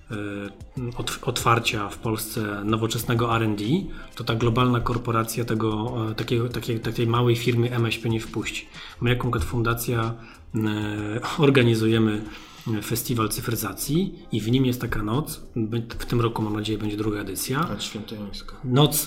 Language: Polish